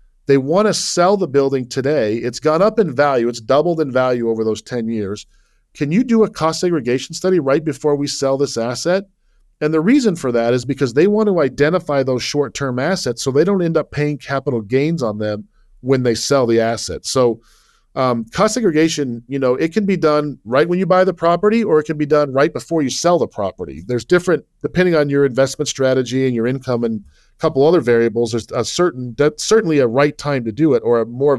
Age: 40-59